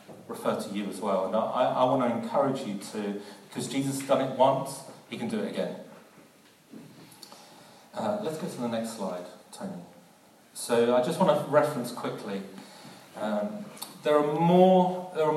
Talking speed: 170 wpm